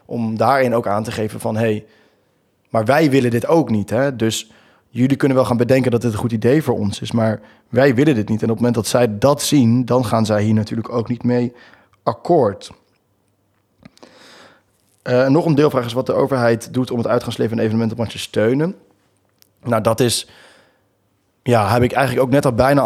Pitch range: 110-130 Hz